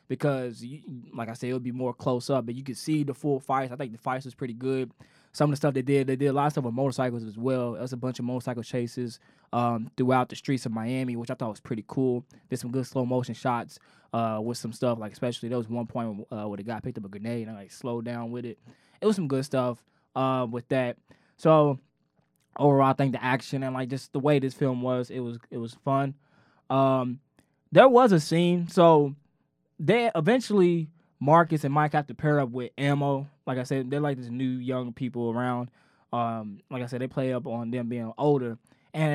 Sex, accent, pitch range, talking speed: male, American, 125-150 Hz, 240 wpm